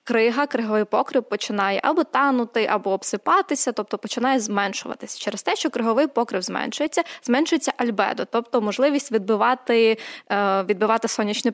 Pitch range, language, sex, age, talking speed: 210-260 Hz, Ukrainian, female, 20-39, 125 wpm